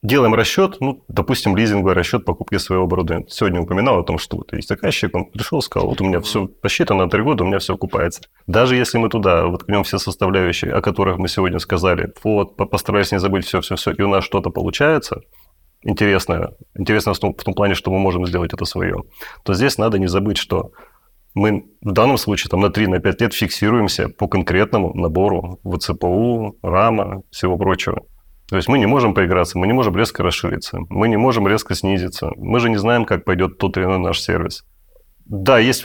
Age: 30-49